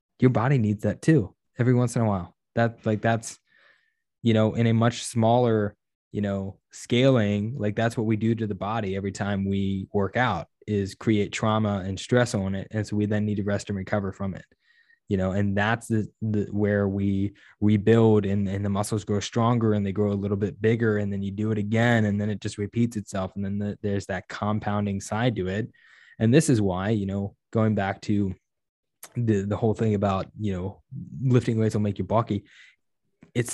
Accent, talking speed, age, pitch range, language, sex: American, 215 wpm, 20-39, 100-115 Hz, English, male